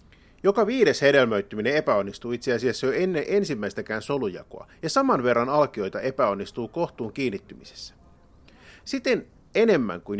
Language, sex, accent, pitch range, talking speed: Finnish, male, native, 105-155 Hz, 120 wpm